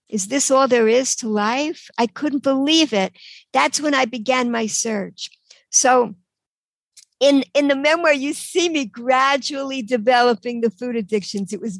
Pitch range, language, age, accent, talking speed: 220-270 Hz, English, 60-79, American, 165 wpm